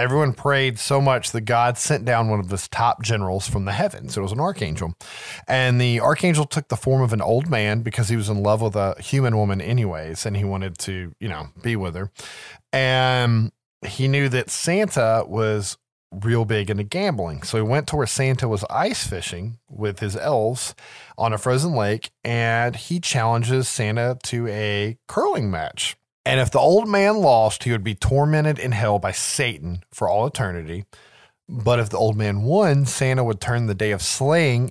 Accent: American